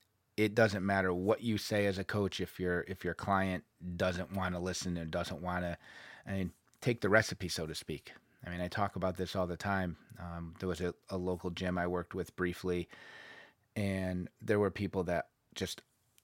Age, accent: 30-49, American